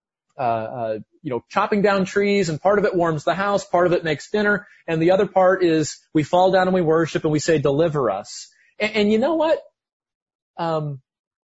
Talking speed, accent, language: 215 wpm, American, English